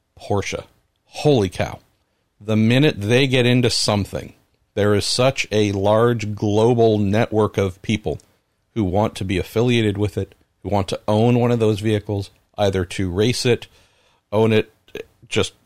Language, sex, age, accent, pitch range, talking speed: English, male, 50-69, American, 95-115 Hz, 155 wpm